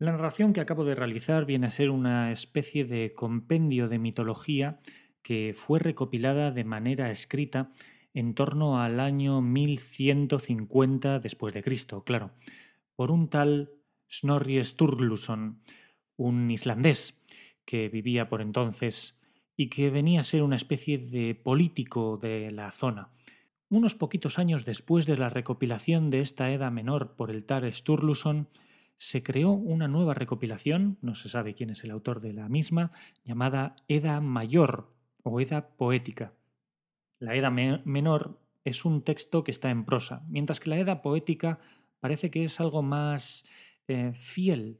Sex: male